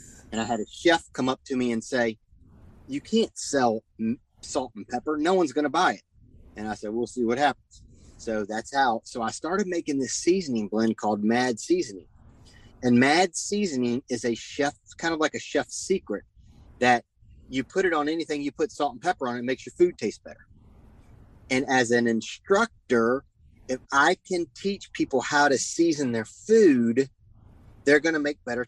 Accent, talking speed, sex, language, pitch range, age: American, 195 wpm, male, English, 110-145 Hz, 30-49